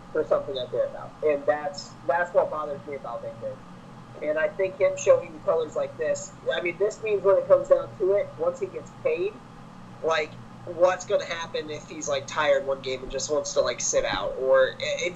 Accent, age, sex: American, 30-49, male